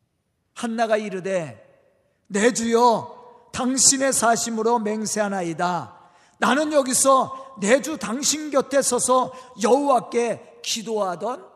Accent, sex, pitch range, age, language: native, male, 190-270 Hz, 40-59, Korean